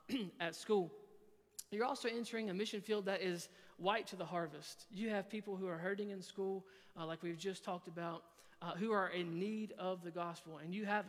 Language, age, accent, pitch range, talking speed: English, 40-59, American, 175-210 Hz, 210 wpm